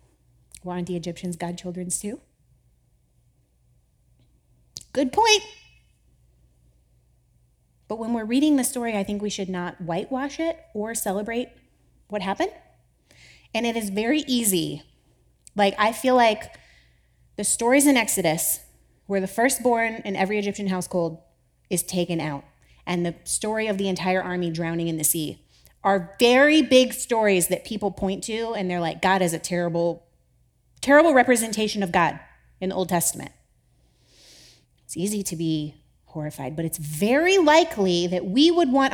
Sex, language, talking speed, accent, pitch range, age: female, English, 145 wpm, American, 160-225 Hz, 30-49